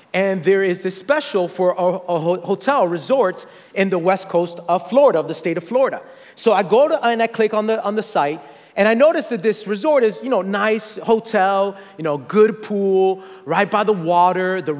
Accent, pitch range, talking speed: American, 190-225 Hz, 215 wpm